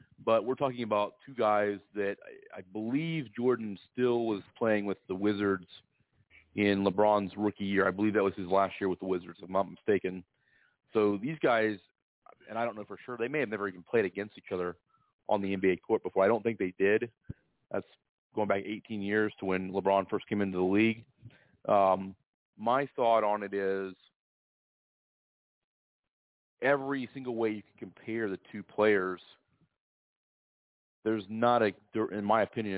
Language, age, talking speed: English, 30-49, 180 wpm